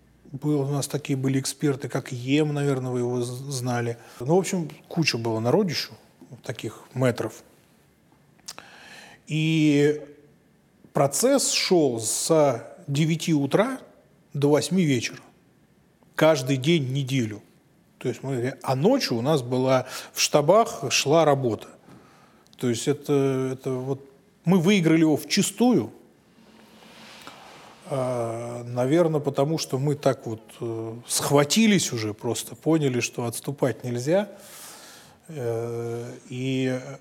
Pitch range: 125-155 Hz